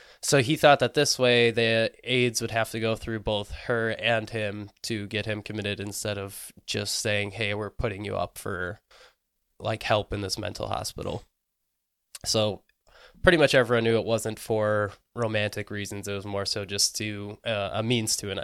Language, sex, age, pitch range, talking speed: English, male, 20-39, 110-125 Hz, 190 wpm